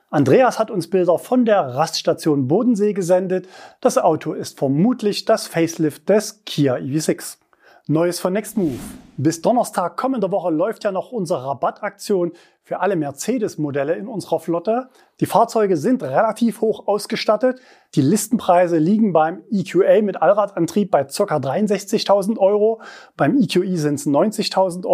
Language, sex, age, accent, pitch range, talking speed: German, male, 30-49, German, 160-220 Hz, 140 wpm